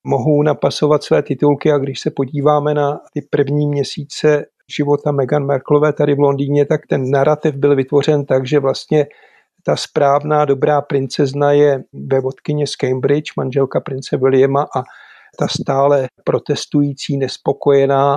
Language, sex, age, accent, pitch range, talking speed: Czech, male, 50-69, native, 135-150 Hz, 140 wpm